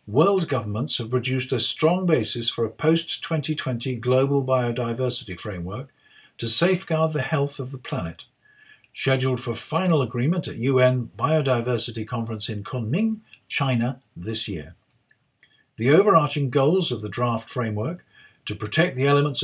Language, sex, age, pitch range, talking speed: English, male, 50-69, 110-140 Hz, 135 wpm